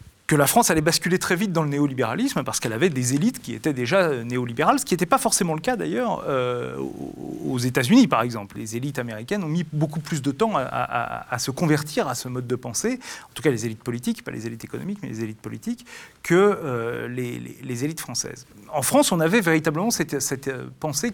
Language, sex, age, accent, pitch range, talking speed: French, male, 30-49, French, 130-190 Hz, 225 wpm